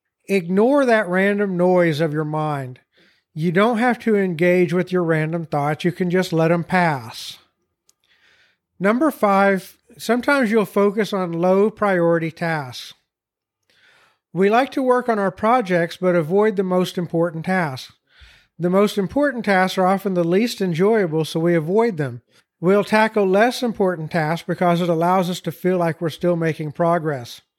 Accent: American